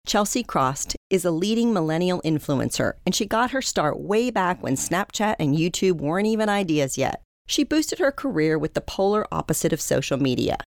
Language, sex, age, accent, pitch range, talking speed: English, female, 40-59, American, 150-200 Hz, 185 wpm